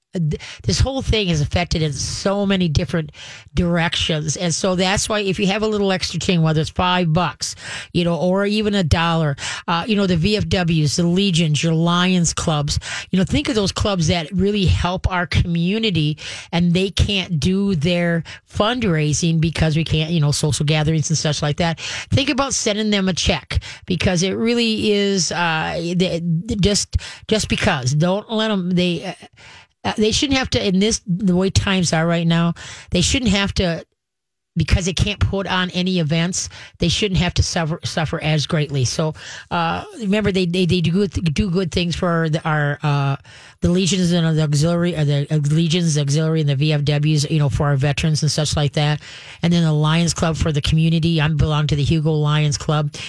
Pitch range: 155-190 Hz